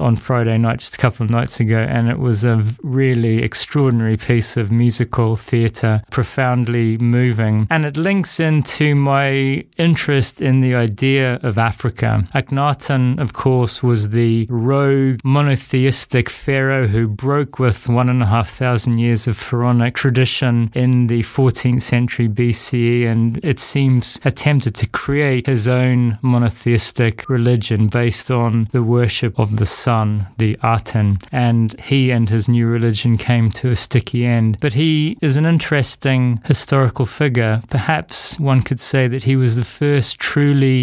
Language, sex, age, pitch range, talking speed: English, male, 20-39, 115-135 Hz, 155 wpm